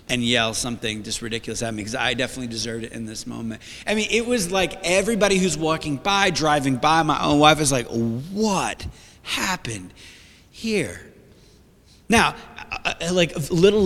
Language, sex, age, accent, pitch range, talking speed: English, male, 30-49, American, 115-150 Hz, 165 wpm